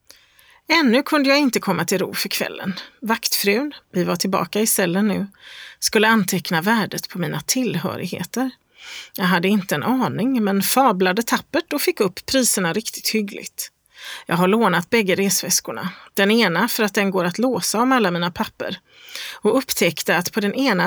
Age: 30-49